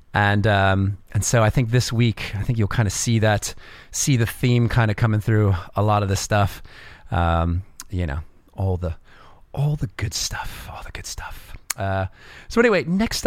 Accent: American